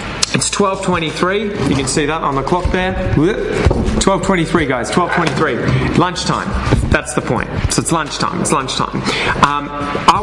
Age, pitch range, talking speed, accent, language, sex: 20-39, 125-160 Hz, 140 wpm, Australian, English, male